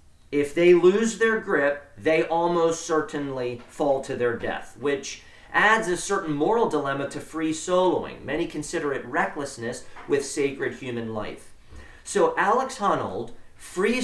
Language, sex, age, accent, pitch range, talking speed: English, male, 40-59, American, 120-185 Hz, 140 wpm